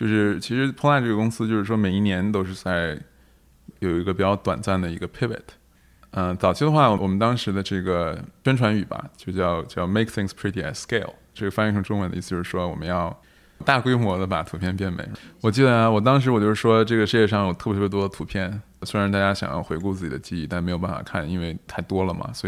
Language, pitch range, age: Chinese, 90-115 Hz, 20-39